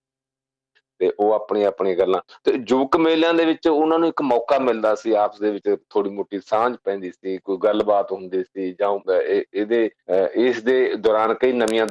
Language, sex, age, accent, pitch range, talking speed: English, male, 40-59, Indian, 105-160 Hz, 180 wpm